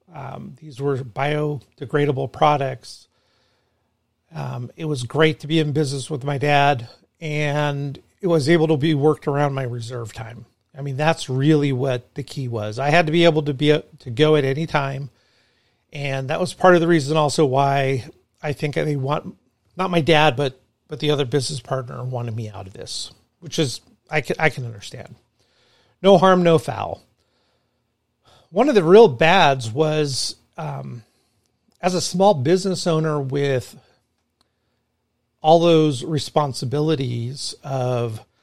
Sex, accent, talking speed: male, American, 160 wpm